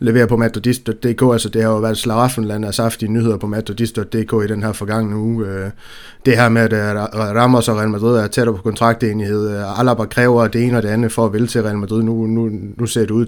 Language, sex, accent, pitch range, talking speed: Danish, male, native, 110-120 Hz, 235 wpm